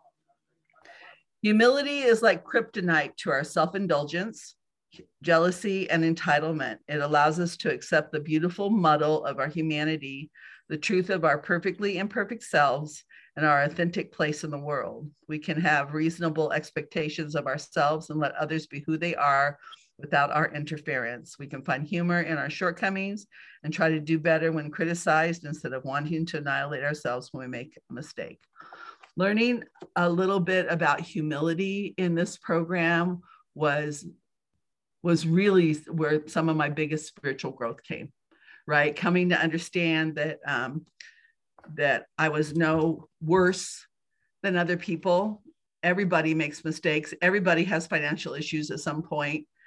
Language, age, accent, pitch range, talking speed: English, 50-69, American, 155-180 Hz, 145 wpm